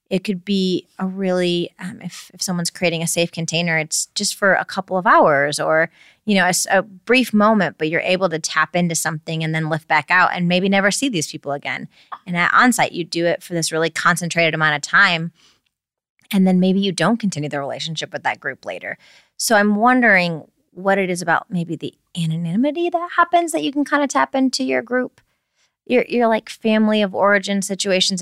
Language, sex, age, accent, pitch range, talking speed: English, female, 20-39, American, 160-200 Hz, 210 wpm